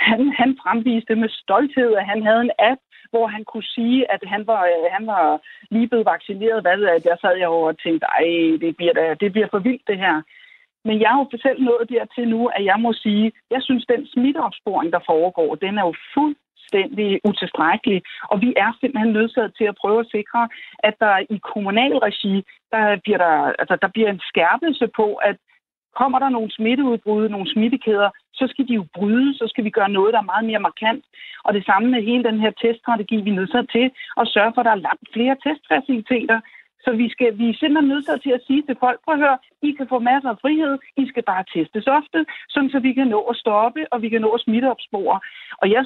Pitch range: 205-255 Hz